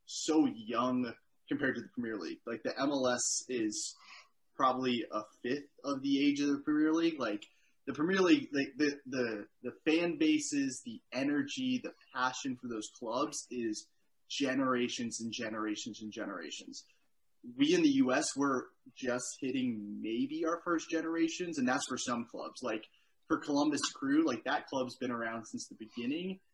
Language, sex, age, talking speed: English, male, 20-39, 165 wpm